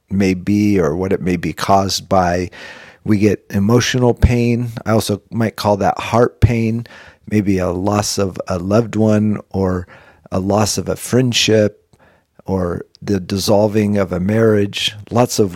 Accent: American